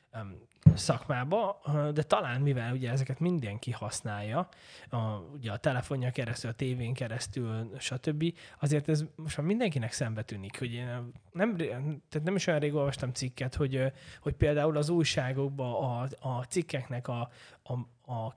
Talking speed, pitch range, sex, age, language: 150 wpm, 125-155 Hz, male, 20-39, Hungarian